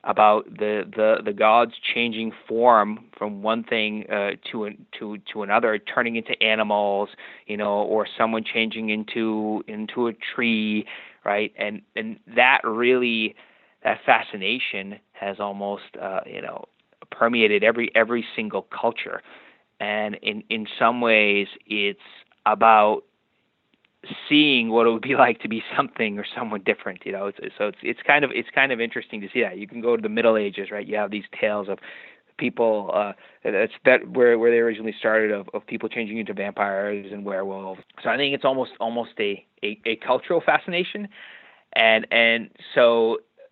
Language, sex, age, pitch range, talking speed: English, male, 30-49, 105-120 Hz, 165 wpm